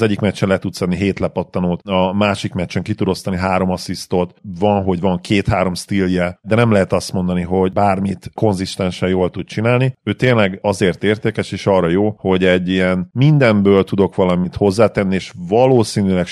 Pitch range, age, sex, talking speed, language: 90-100 Hz, 40-59, male, 175 wpm, Hungarian